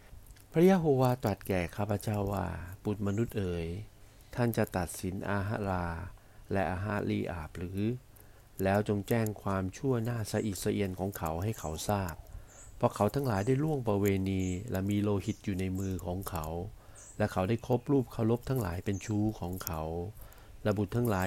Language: Thai